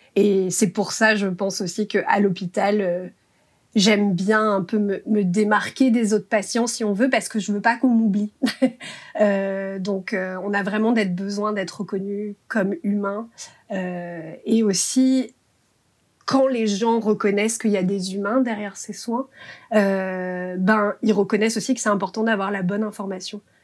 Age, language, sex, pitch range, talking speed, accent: 30-49, French, female, 195-220 Hz, 175 wpm, French